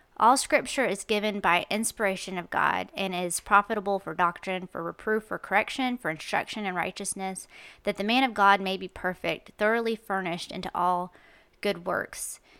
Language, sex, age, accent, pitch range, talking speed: English, female, 30-49, American, 185-215 Hz, 165 wpm